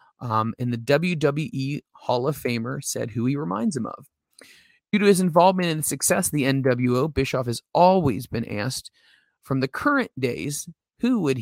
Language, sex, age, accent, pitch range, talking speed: English, male, 30-49, American, 125-150 Hz, 170 wpm